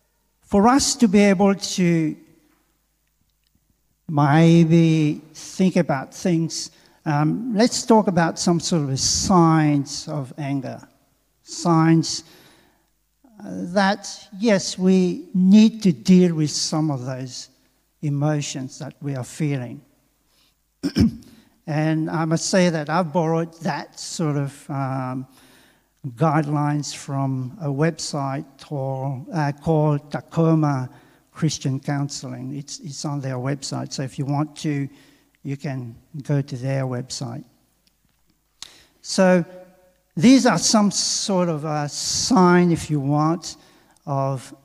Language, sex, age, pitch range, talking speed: English, male, 50-69, 140-175 Hz, 115 wpm